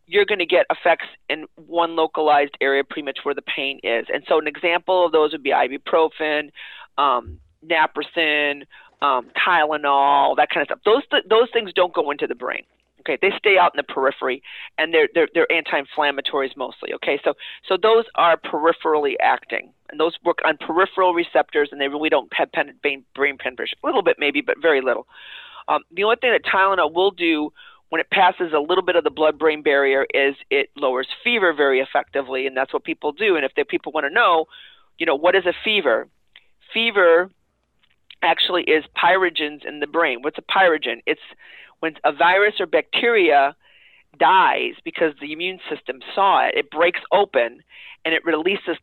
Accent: American